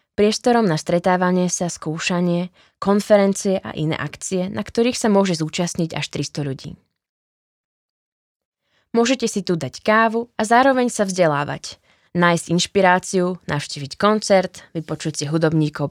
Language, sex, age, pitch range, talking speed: Slovak, female, 20-39, 160-195 Hz, 125 wpm